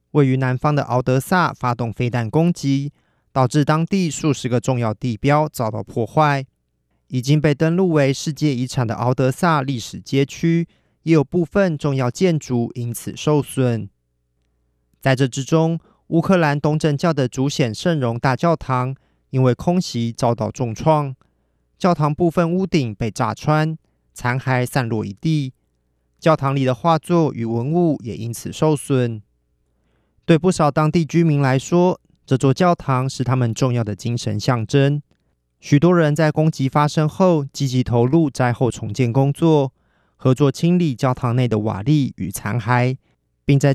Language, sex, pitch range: Chinese, male, 120-155 Hz